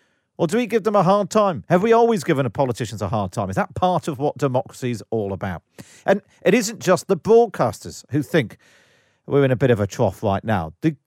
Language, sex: English, male